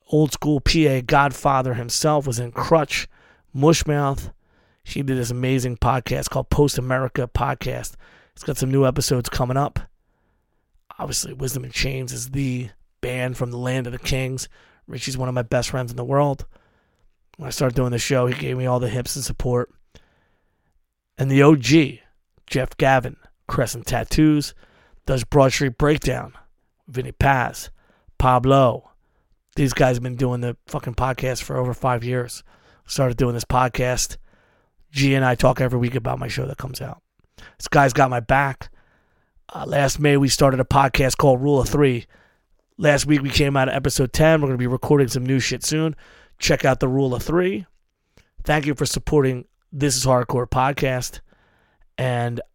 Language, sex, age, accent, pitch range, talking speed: English, male, 30-49, American, 125-140 Hz, 170 wpm